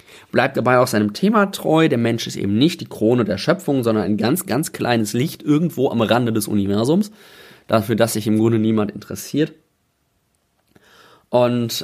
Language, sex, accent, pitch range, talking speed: German, male, German, 105-150 Hz, 170 wpm